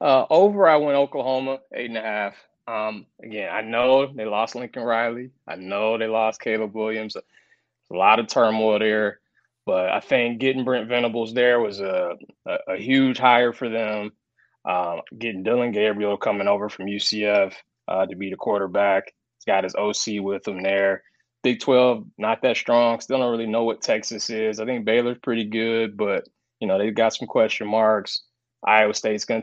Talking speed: 185 wpm